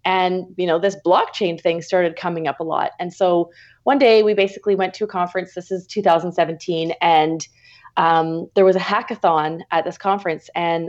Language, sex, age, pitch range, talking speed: English, female, 30-49, 170-200 Hz, 185 wpm